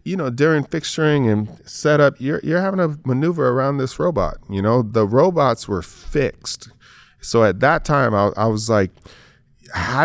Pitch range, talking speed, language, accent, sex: 100-130 Hz, 180 wpm, English, American, male